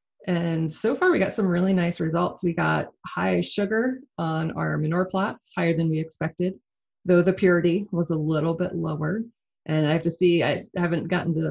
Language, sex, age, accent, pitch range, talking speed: English, female, 30-49, American, 155-185 Hz, 200 wpm